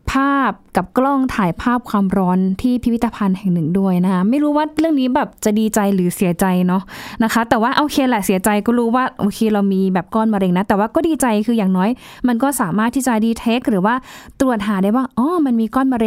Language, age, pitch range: Thai, 20-39, 195-250 Hz